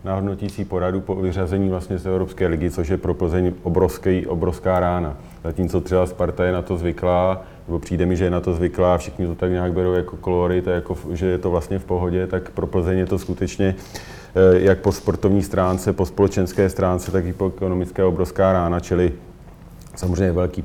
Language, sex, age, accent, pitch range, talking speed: Czech, male, 40-59, native, 90-95 Hz, 200 wpm